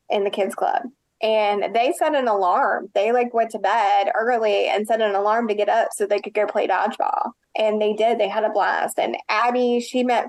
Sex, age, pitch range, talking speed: female, 20-39, 210-250 Hz, 225 wpm